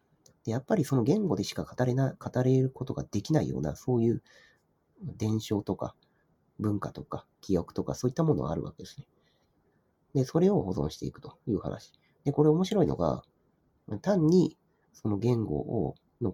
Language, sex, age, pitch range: Japanese, male, 40-59, 90-140 Hz